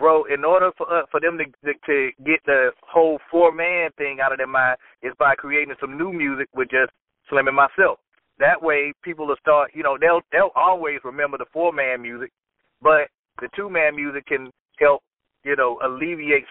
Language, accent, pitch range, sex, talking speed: English, American, 130-155 Hz, male, 195 wpm